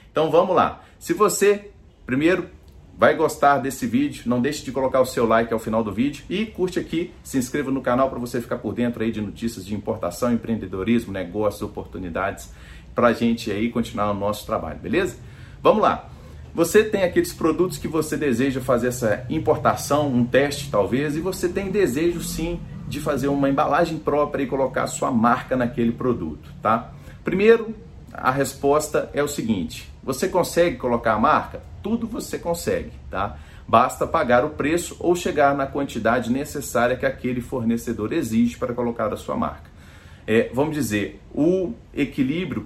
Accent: Brazilian